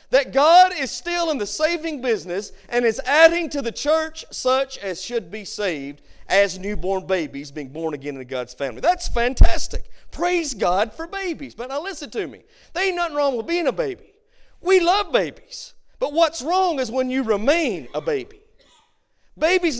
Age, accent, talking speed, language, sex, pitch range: 40-59, American, 180 wpm, English, male, 230-325 Hz